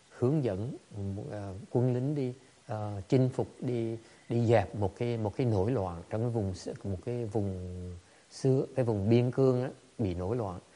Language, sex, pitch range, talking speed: English, male, 100-125 Hz, 180 wpm